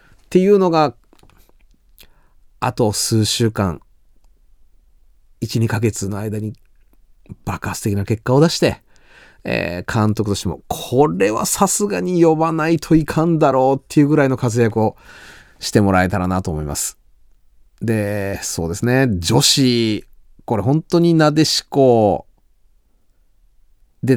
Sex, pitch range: male, 100-150 Hz